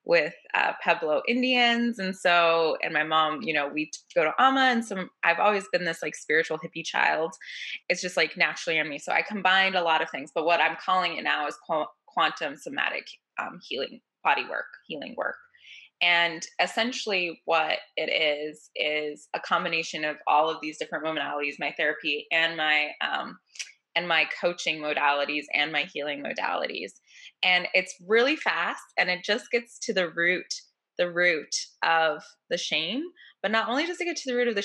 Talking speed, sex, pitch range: 185 wpm, female, 160-230 Hz